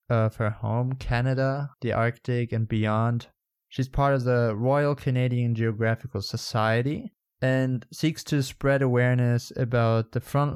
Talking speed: 135 wpm